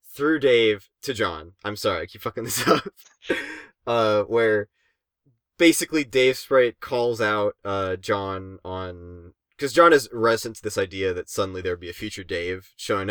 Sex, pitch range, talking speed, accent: male, 95-115 Hz, 170 wpm, American